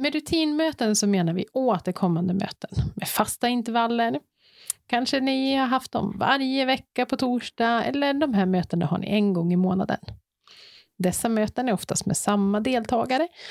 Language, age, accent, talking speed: Swedish, 30-49, native, 160 wpm